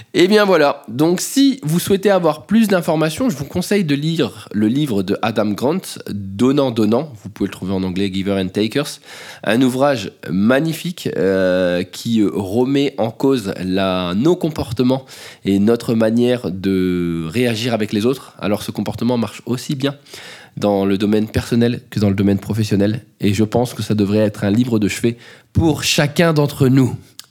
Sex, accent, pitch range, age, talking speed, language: male, French, 105-150 Hz, 20-39, 175 wpm, French